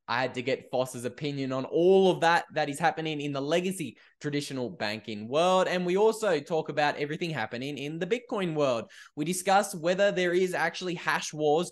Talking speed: 195 wpm